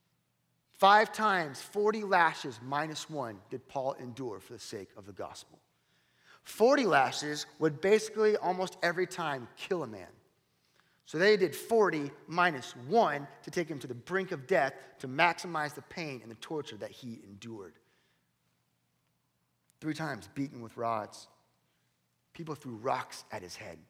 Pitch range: 105-150 Hz